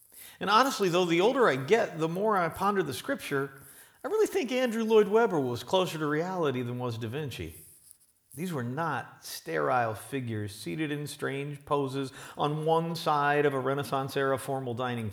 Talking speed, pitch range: 175 wpm, 120-165 Hz